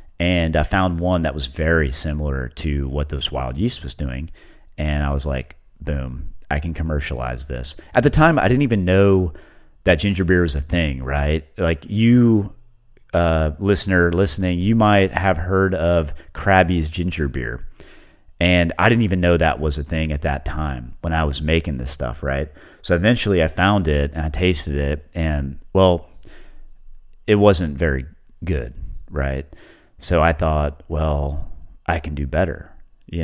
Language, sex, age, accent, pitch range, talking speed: English, male, 30-49, American, 75-90 Hz, 170 wpm